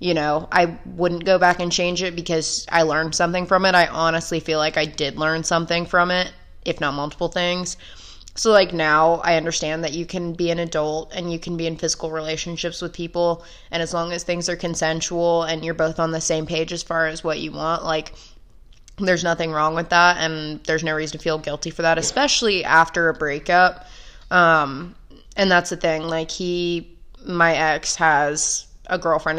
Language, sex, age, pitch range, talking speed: English, female, 20-39, 160-175 Hz, 205 wpm